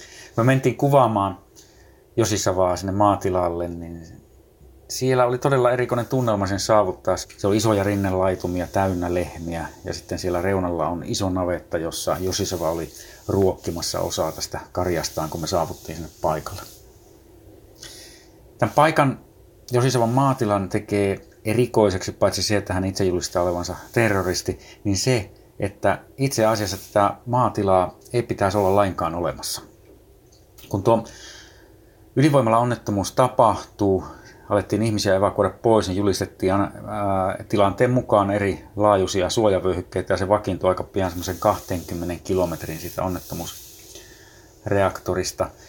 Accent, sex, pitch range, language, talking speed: native, male, 95-110 Hz, Finnish, 120 wpm